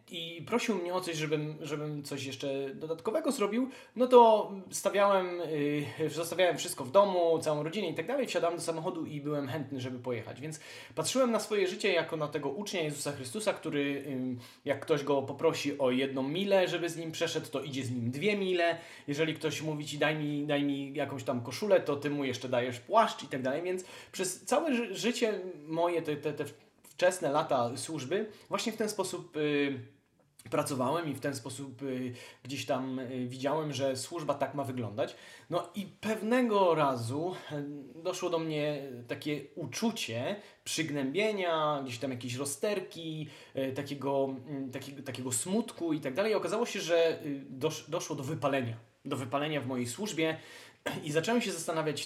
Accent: native